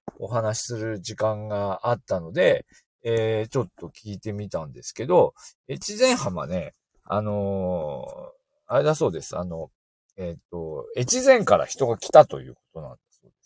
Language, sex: Japanese, male